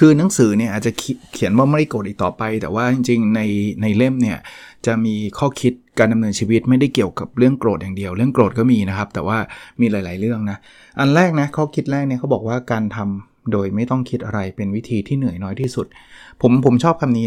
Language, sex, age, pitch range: Thai, male, 20-39, 110-140 Hz